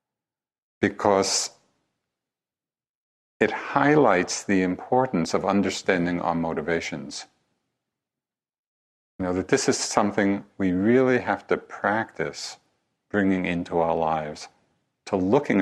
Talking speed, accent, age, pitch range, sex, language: 100 wpm, American, 50-69, 85-105 Hz, male, English